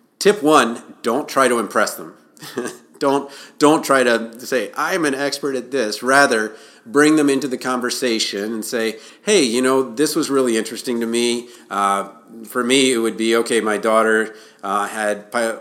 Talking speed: 175 wpm